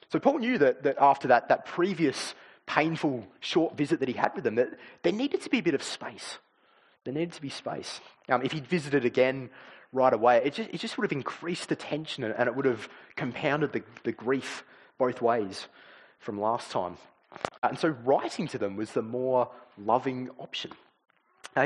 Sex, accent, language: male, Australian, English